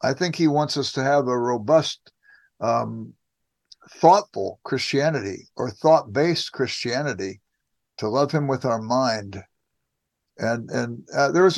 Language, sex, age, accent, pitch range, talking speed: English, male, 60-79, American, 125-160 Hz, 135 wpm